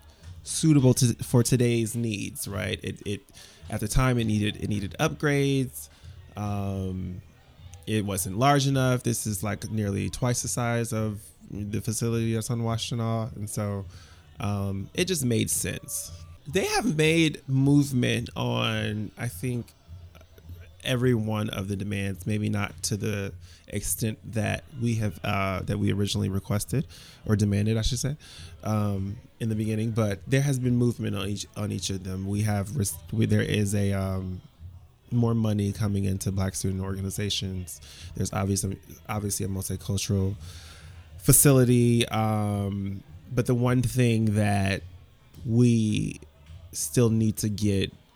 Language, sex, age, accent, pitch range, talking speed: English, male, 20-39, American, 95-115 Hz, 145 wpm